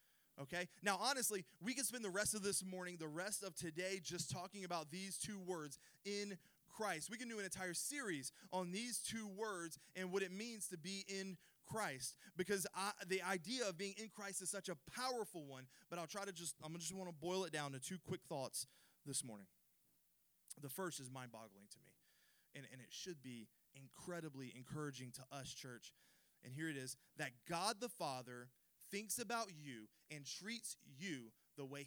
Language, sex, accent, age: English, male, American, 20-39